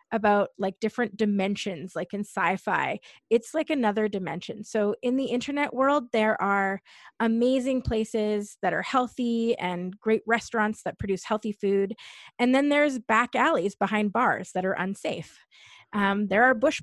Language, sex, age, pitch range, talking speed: English, female, 30-49, 195-230 Hz, 155 wpm